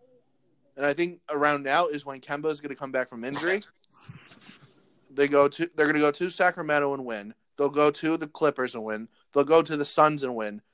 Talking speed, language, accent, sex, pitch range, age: 225 wpm, English, American, male, 135-165 Hz, 20-39